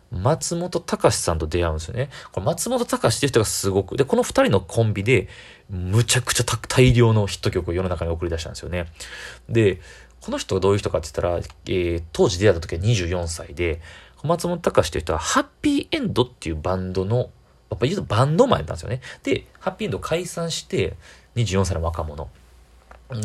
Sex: male